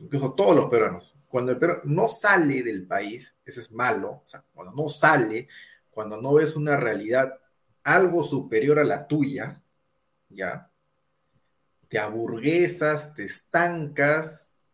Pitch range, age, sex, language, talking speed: 135-175 Hz, 30-49, male, Spanish, 140 wpm